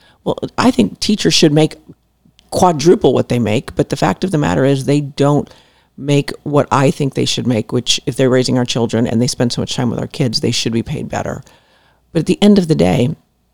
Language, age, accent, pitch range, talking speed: English, 40-59, American, 130-170 Hz, 235 wpm